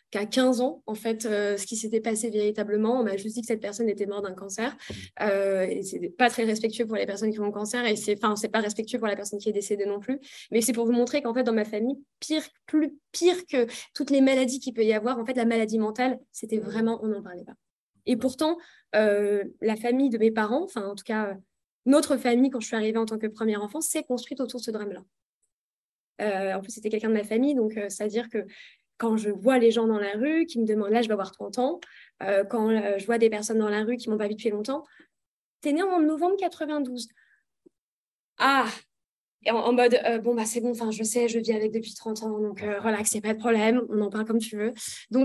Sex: female